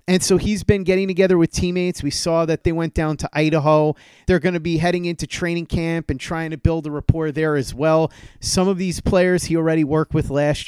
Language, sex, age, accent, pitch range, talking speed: English, male, 30-49, American, 140-170 Hz, 235 wpm